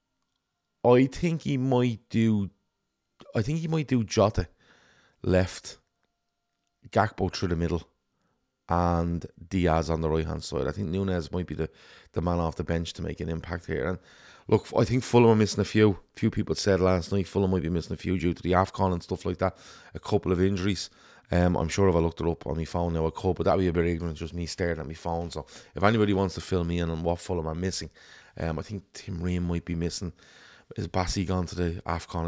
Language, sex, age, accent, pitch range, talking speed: English, male, 30-49, Irish, 80-100 Hz, 235 wpm